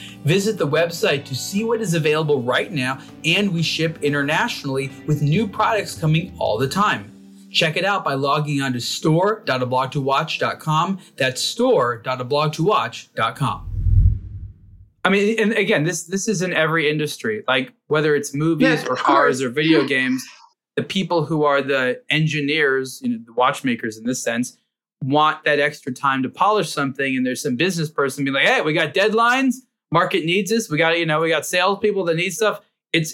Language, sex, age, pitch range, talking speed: English, male, 20-39, 140-195 Hz, 170 wpm